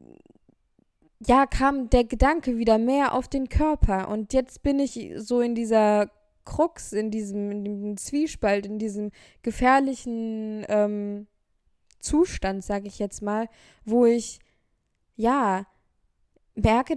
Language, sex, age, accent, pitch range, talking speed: German, female, 20-39, German, 215-265 Hz, 125 wpm